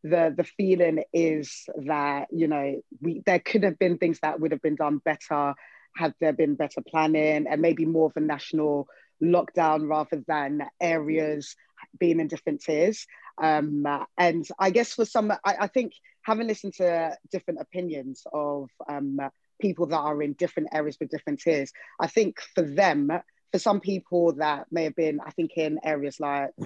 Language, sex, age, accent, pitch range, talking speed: English, female, 20-39, British, 150-175 Hz, 180 wpm